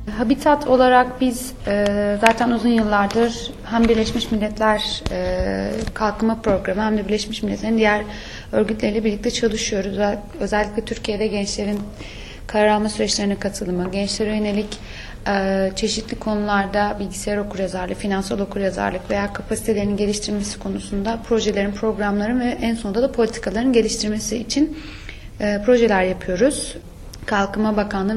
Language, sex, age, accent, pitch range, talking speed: Turkish, female, 30-49, native, 200-235 Hz, 115 wpm